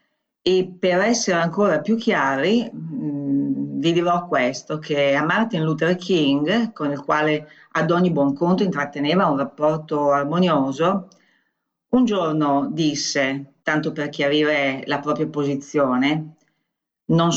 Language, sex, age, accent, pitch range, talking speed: Italian, female, 40-59, native, 145-185 Hz, 125 wpm